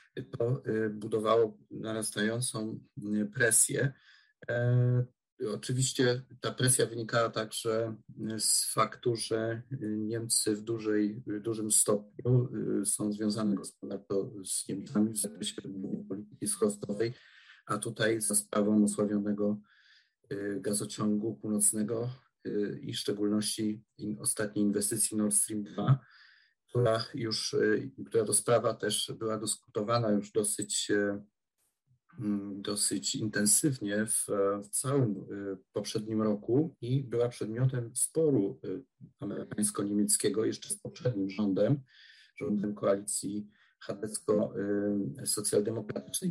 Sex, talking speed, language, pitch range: male, 95 wpm, Polish, 105-120 Hz